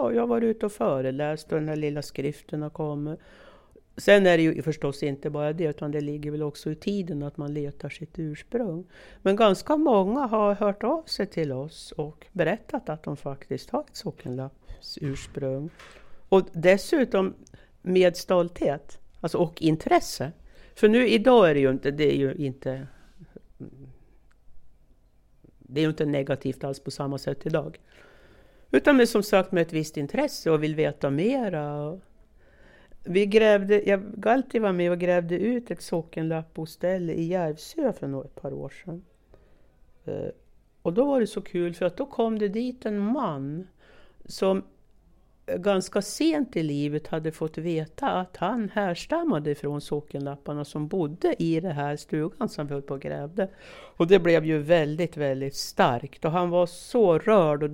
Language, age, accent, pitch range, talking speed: Swedish, 60-79, native, 150-200 Hz, 165 wpm